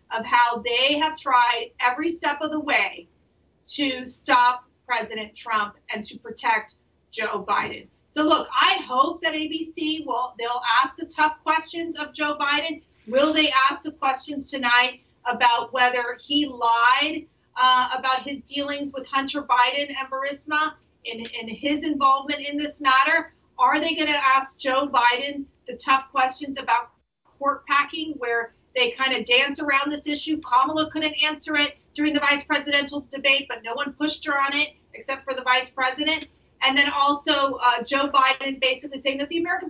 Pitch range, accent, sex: 245-300 Hz, American, female